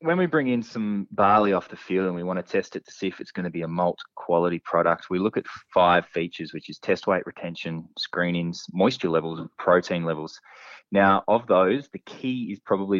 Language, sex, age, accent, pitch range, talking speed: English, male, 20-39, Australian, 80-100 Hz, 225 wpm